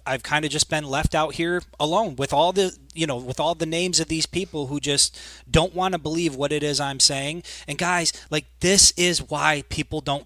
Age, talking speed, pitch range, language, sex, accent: 30-49, 235 wpm, 135-170 Hz, English, male, American